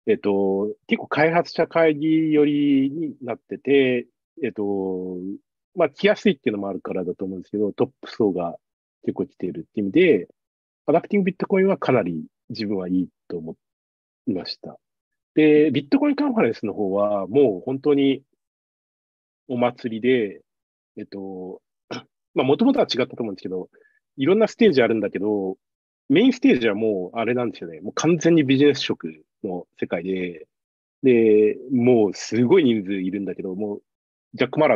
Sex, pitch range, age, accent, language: male, 95-160 Hz, 40-59, native, Japanese